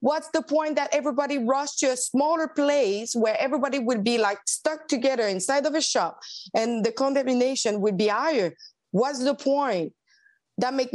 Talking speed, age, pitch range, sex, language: 175 wpm, 30-49, 195-270 Hz, female, English